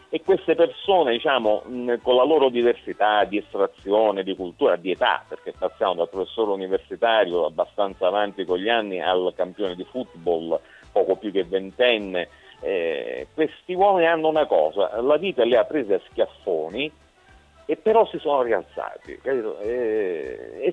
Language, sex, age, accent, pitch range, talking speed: Italian, male, 50-69, native, 110-170 Hz, 150 wpm